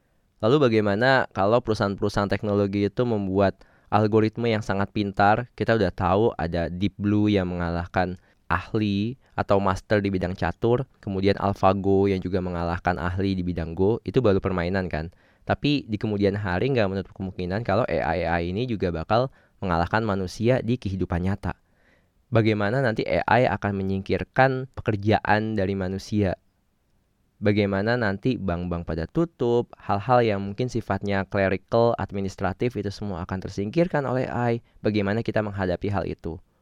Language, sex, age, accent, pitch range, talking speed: Indonesian, male, 20-39, native, 95-110 Hz, 140 wpm